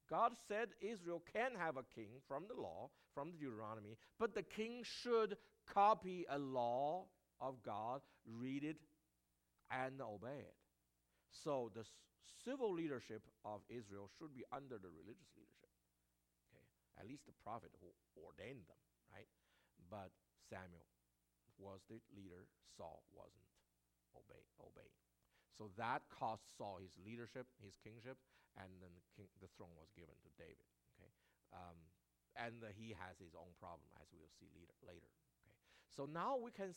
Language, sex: English, male